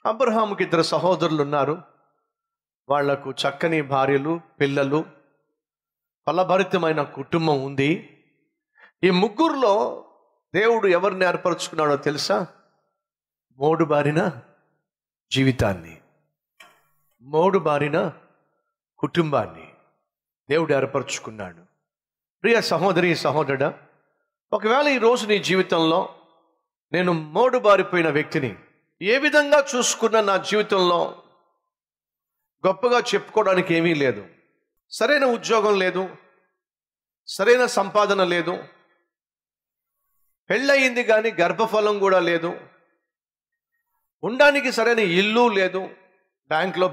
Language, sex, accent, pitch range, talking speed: Telugu, male, native, 155-225 Hz, 80 wpm